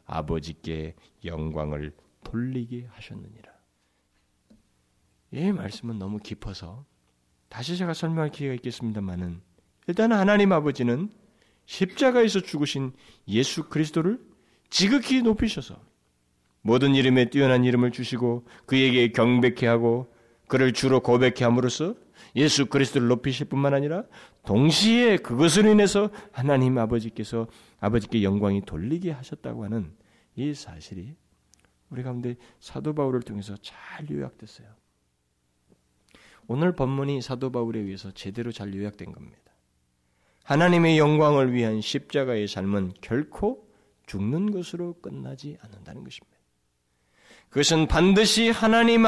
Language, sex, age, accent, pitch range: Korean, male, 40-59, native, 100-150 Hz